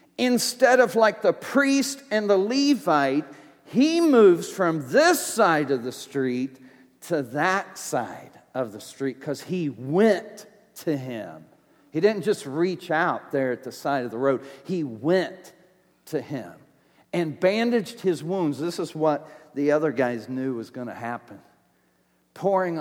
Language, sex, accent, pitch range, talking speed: English, male, American, 125-170 Hz, 155 wpm